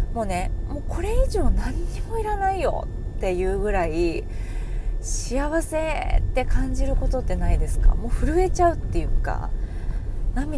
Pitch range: 90-115 Hz